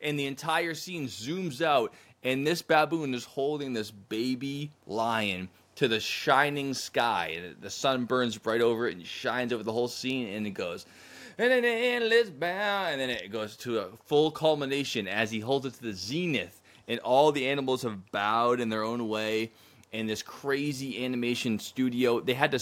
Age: 20-39